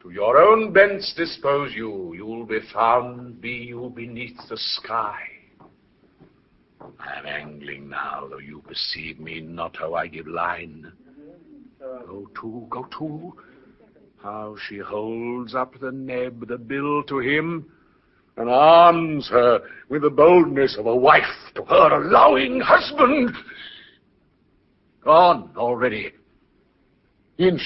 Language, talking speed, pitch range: English, 125 wpm, 120-170 Hz